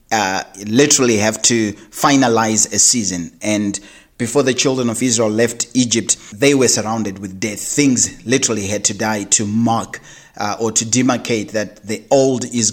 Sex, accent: male, South African